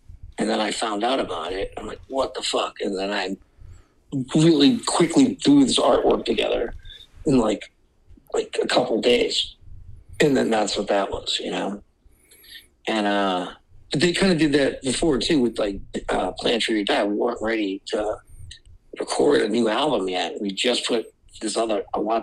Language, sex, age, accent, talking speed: English, male, 50-69, American, 180 wpm